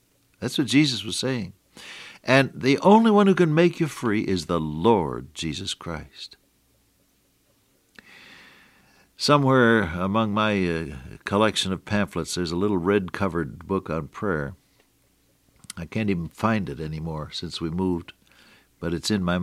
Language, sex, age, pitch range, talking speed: English, male, 60-79, 90-120 Hz, 140 wpm